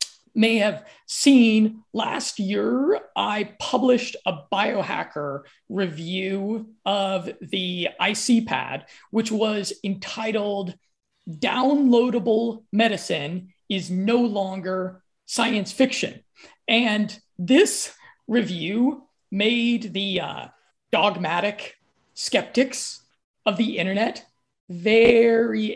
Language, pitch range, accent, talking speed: English, 190-235 Hz, American, 80 wpm